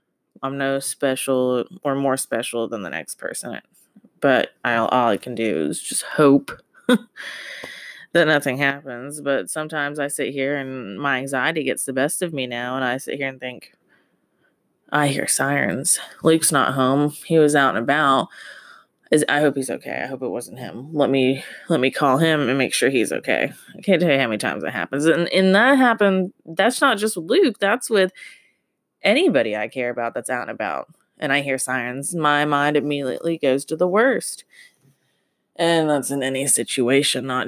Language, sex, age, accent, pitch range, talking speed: English, female, 20-39, American, 130-170 Hz, 190 wpm